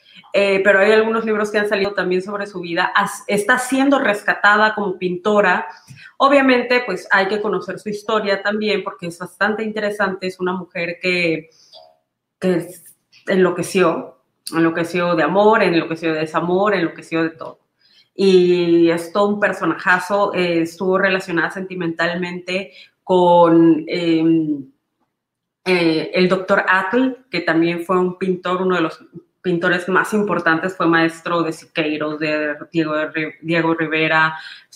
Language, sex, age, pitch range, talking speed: Spanish, female, 30-49, 170-200 Hz, 140 wpm